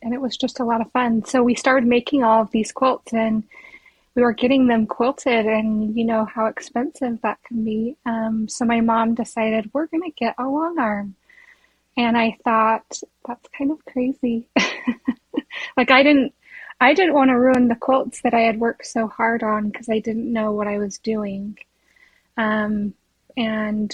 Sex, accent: female, American